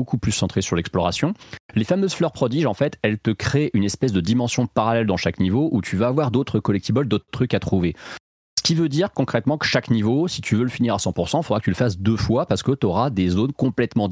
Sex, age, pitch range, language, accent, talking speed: male, 30-49, 95-125 Hz, French, French, 265 wpm